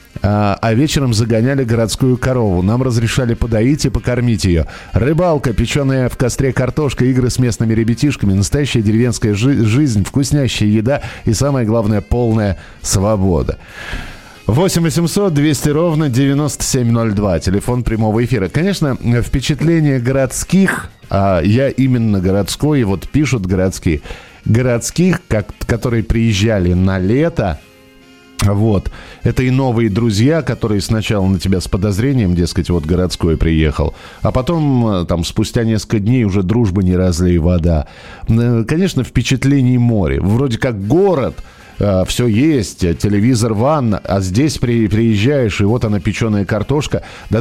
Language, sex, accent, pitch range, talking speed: Russian, male, native, 100-130 Hz, 125 wpm